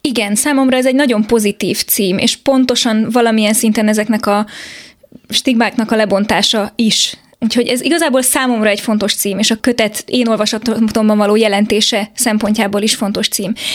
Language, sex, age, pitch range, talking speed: Hungarian, female, 20-39, 210-240 Hz, 155 wpm